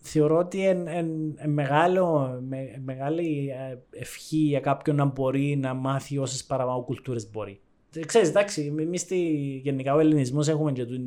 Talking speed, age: 130 wpm, 20-39